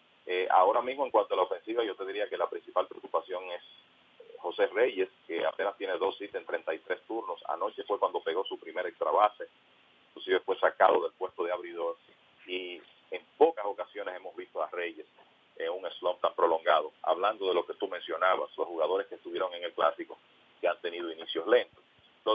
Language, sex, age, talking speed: English, male, 40-59, 200 wpm